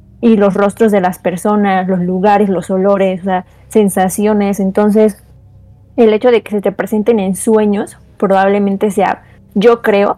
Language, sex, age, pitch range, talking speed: Spanish, female, 20-39, 195-220 Hz, 155 wpm